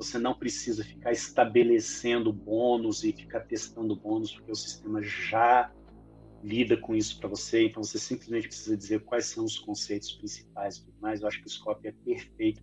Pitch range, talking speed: 110-140 Hz, 175 wpm